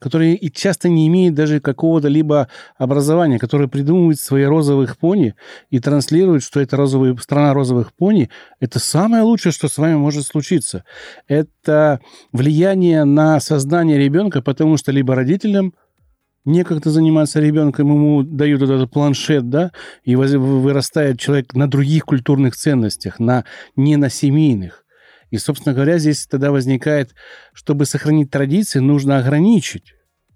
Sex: male